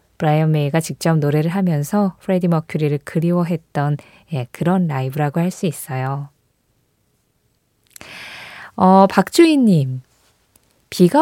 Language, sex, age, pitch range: Korean, female, 20-39, 155-220 Hz